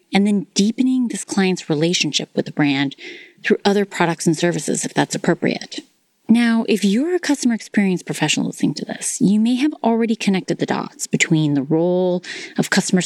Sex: female